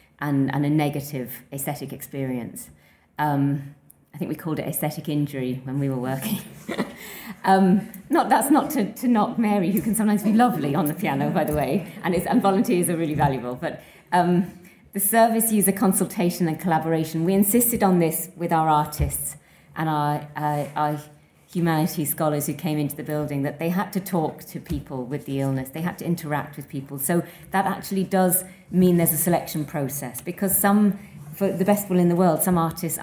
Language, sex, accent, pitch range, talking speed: English, female, British, 145-185 Hz, 195 wpm